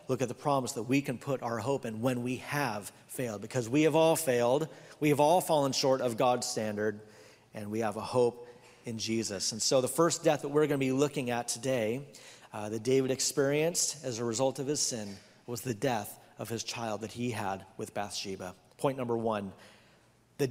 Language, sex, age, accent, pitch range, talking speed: English, male, 40-59, American, 115-150 Hz, 210 wpm